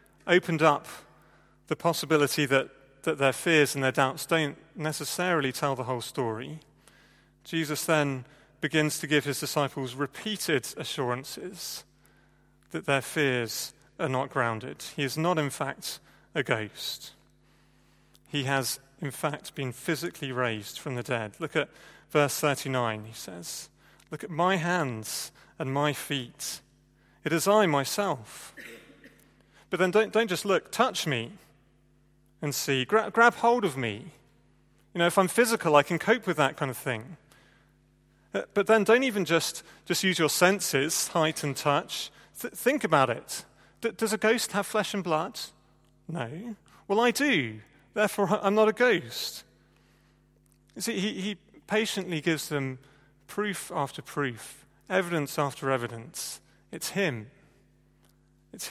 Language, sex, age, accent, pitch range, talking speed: English, male, 40-59, British, 135-180 Hz, 145 wpm